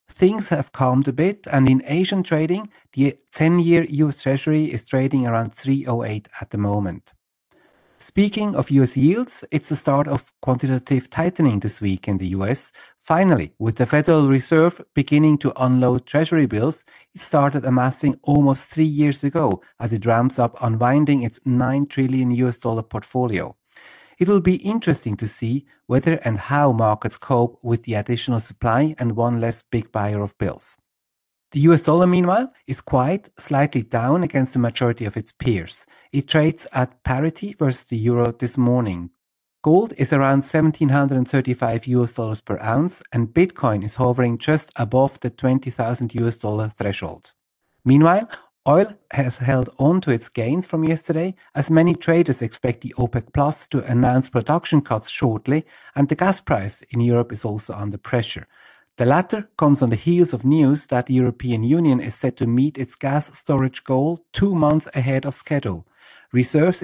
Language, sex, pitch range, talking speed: English, male, 120-155 Hz, 165 wpm